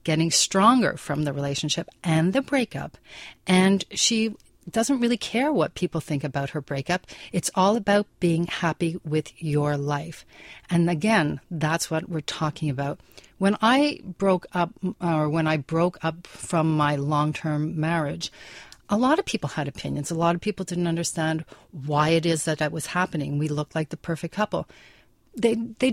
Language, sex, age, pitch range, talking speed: English, female, 40-59, 155-205 Hz, 170 wpm